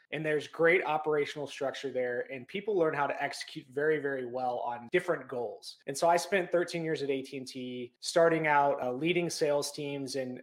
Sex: male